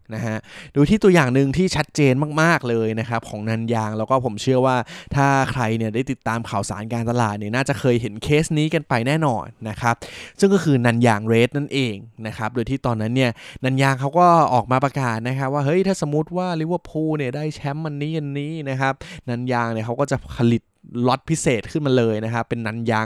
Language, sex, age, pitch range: Thai, male, 20-39, 115-140 Hz